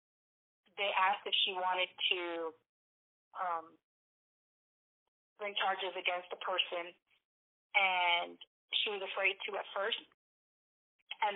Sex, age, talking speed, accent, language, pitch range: female, 30-49, 105 wpm, American, English, 175-195 Hz